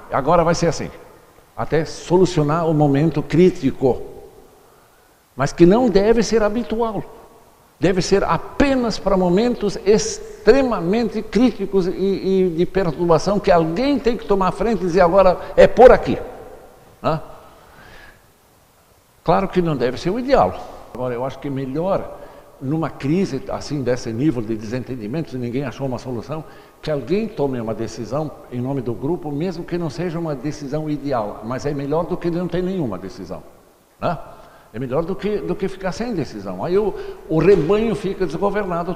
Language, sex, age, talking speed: Portuguese, male, 60-79, 155 wpm